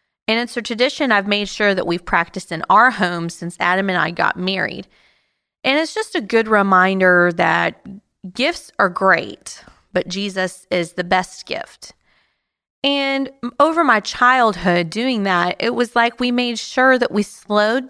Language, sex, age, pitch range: English, female, 30-49, 180-230 Hz